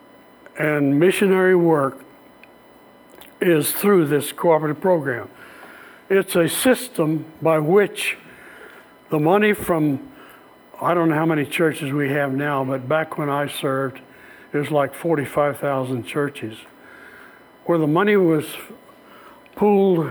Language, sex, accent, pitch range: English, male, American, 145-185 Hz